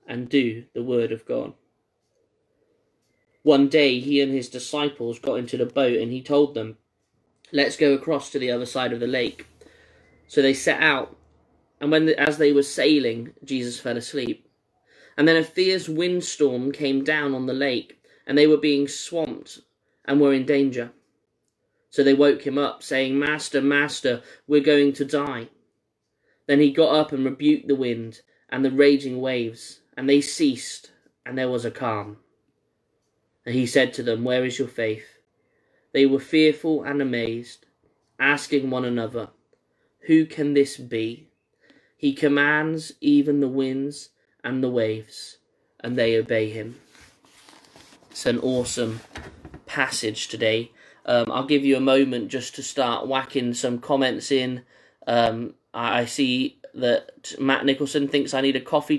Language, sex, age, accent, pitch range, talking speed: English, male, 20-39, British, 120-145 Hz, 160 wpm